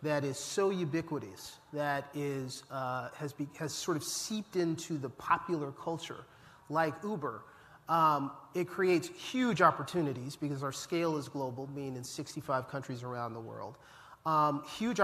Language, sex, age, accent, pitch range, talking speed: English, male, 40-59, American, 145-175 Hz, 150 wpm